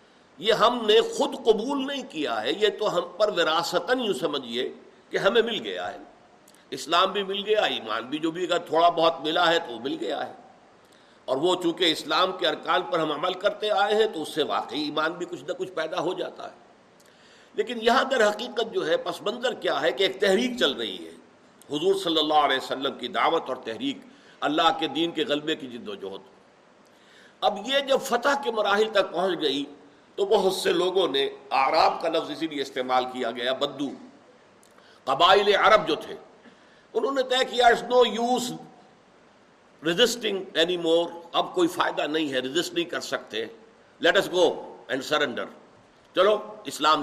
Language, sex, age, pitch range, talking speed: Urdu, male, 50-69, 165-260 Hz, 185 wpm